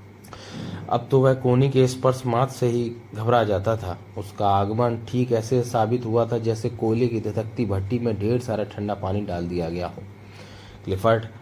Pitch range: 100-125 Hz